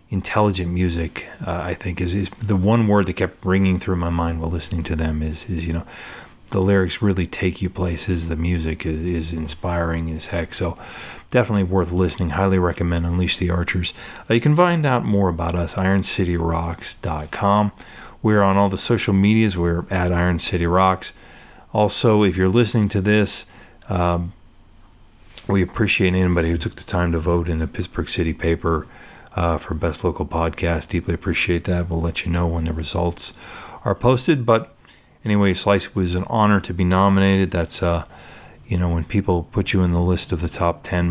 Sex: male